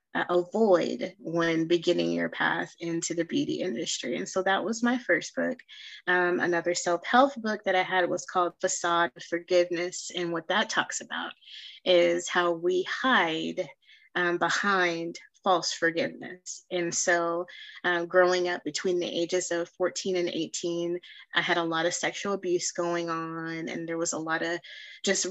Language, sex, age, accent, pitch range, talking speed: English, female, 20-39, American, 170-195 Hz, 165 wpm